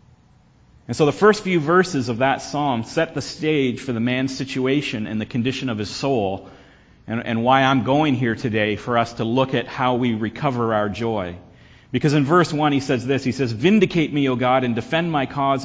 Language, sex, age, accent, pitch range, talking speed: English, male, 40-59, American, 125-150 Hz, 215 wpm